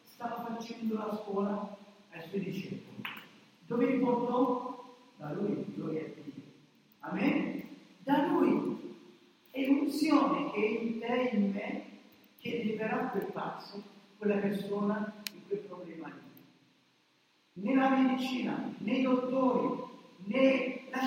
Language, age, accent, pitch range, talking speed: Italian, 50-69, native, 215-275 Hz, 125 wpm